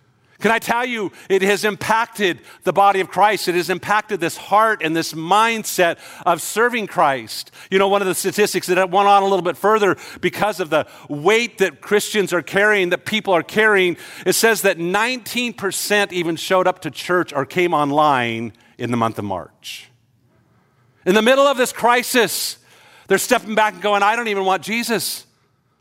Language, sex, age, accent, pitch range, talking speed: English, male, 50-69, American, 125-200 Hz, 185 wpm